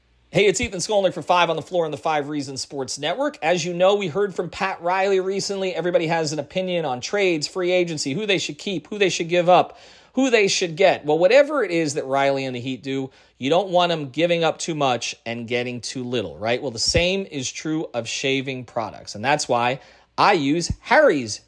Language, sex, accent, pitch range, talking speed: English, male, American, 130-185 Hz, 230 wpm